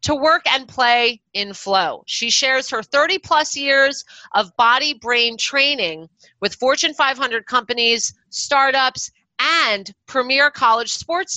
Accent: American